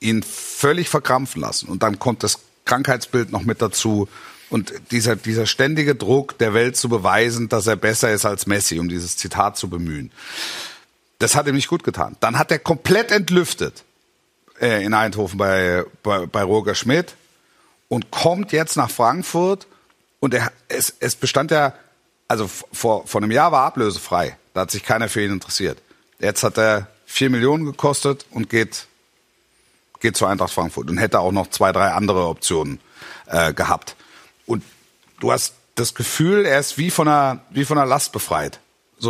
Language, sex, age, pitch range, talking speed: German, male, 50-69, 110-145 Hz, 175 wpm